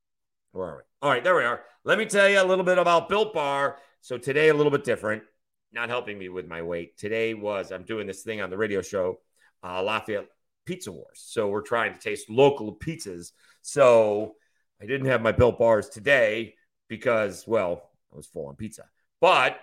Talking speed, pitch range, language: 205 wpm, 120-170 Hz, English